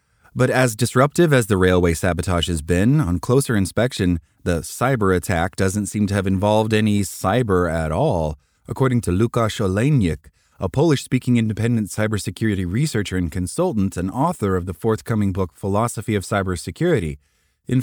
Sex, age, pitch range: male, 20-39, 95-130 Hz